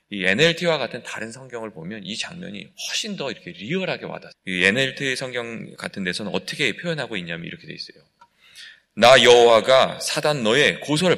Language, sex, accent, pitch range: Korean, male, native, 125-190 Hz